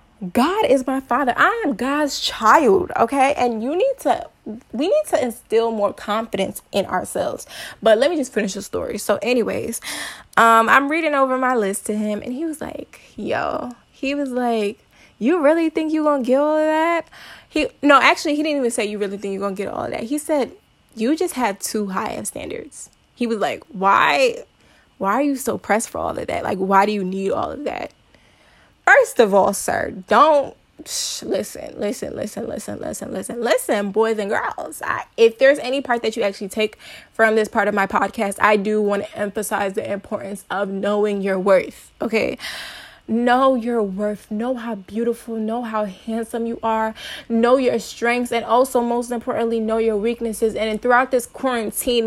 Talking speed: 195 wpm